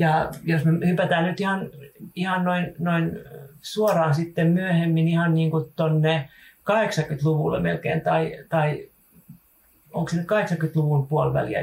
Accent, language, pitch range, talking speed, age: native, Finnish, 140-160 Hz, 120 wpm, 40-59